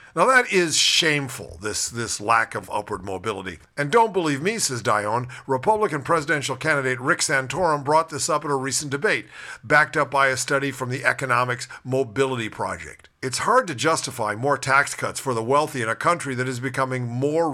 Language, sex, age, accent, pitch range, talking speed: English, male, 50-69, American, 125-155 Hz, 190 wpm